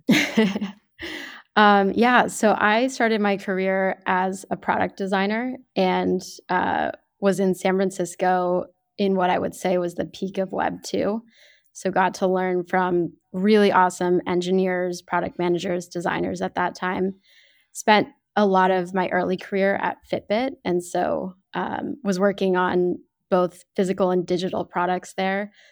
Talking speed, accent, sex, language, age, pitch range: 145 wpm, American, female, English, 10-29, 180-200 Hz